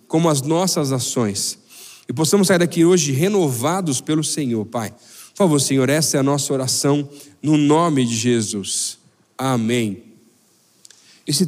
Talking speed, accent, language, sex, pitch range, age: 140 wpm, Brazilian, Portuguese, male, 155-205 Hz, 40-59